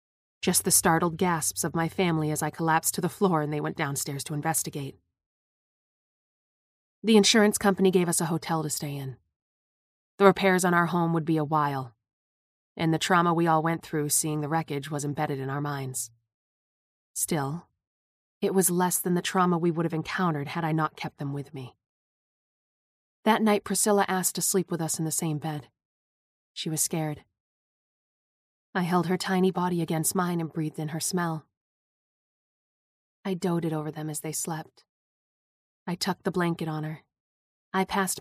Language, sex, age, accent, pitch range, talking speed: English, female, 30-49, American, 145-180 Hz, 175 wpm